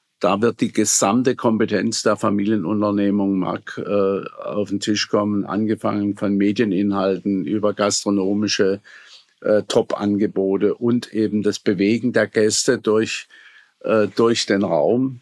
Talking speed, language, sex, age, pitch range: 120 wpm, German, male, 50-69, 100-115 Hz